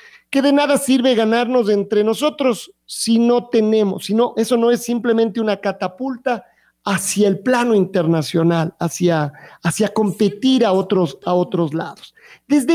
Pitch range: 185-230 Hz